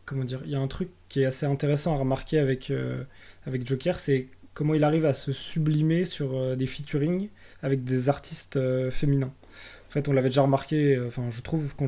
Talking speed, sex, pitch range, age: 210 wpm, male, 130-145 Hz, 20-39